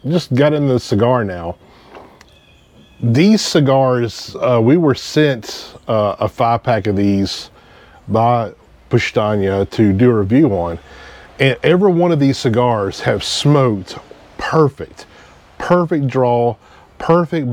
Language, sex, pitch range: English, male, 110-140 Hz